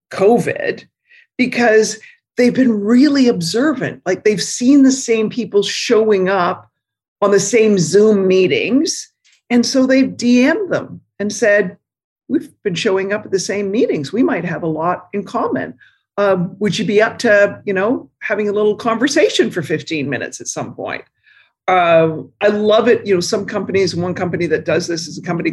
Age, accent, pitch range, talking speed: 50-69, American, 170-240 Hz, 175 wpm